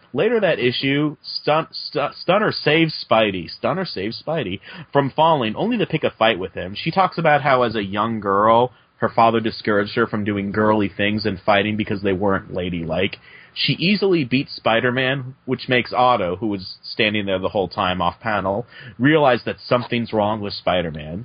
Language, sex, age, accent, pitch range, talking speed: English, male, 30-49, American, 100-130 Hz, 165 wpm